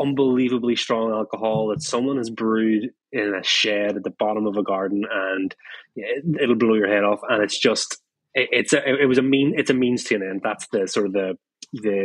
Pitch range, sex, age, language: 100-115 Hz, male, 20-39, English